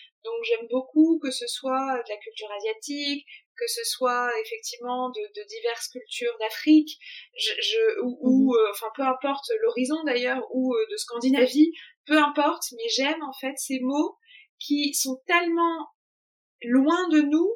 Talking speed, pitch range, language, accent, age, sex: 155 wpm, 250-325 Hz, French, French, 20-39, female